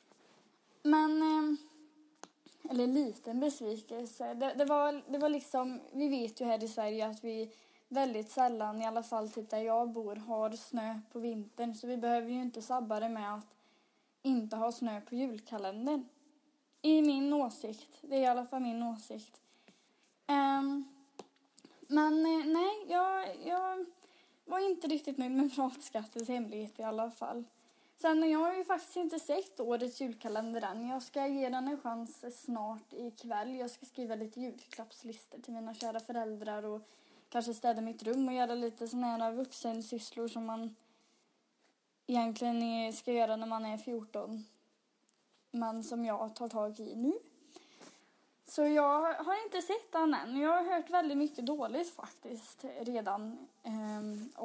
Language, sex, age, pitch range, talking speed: Swedish, female, 20-39, 225-295 Hz, 155 wpm